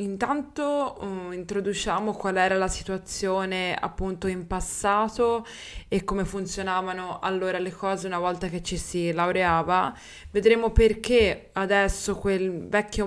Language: Italian